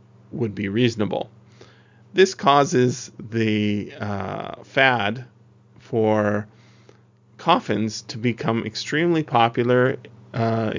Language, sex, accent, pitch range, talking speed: English, male, American, 110-135 Hz, 85 wpm